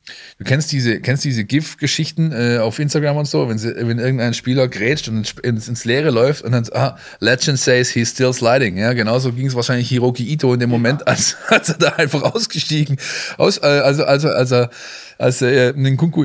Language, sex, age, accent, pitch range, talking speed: German, male, 20-39, German, 110-135 Hz, 210 wpm